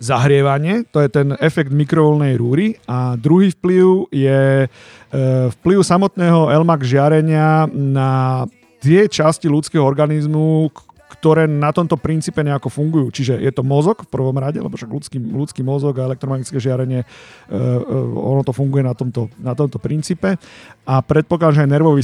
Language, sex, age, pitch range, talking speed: Slovak, male, 40-59, 135-165 Hz, 150 wpm